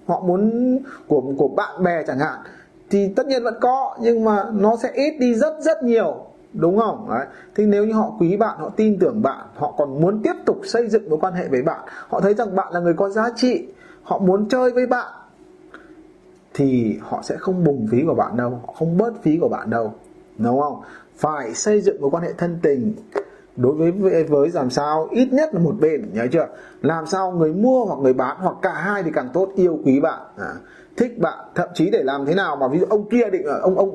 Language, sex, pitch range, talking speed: Vietnamese, male, 180-235 Hz, 230 wpm